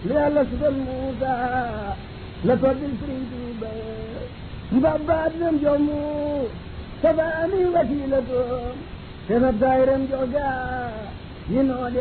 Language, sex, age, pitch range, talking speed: French, male, 50-69, 255-315 Hz, 80 wpm